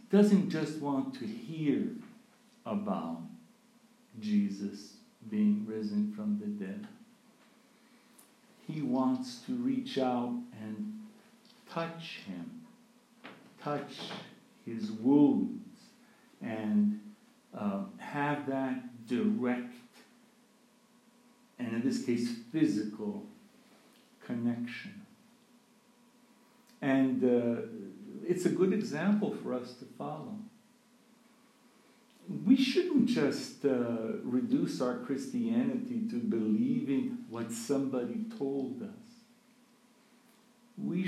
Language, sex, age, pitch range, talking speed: English, male, 60-79, 175-240 Hz, 85 wpm